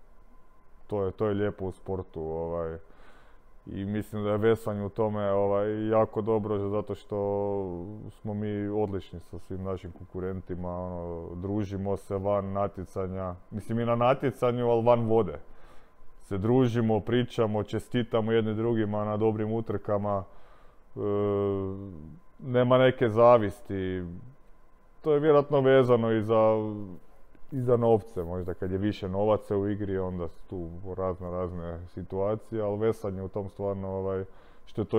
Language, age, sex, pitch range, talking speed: Croatian, 20-39, male, 95-115 Hz, 135 wpm